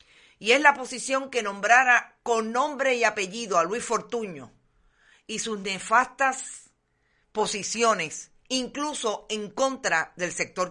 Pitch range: 180-235 Hz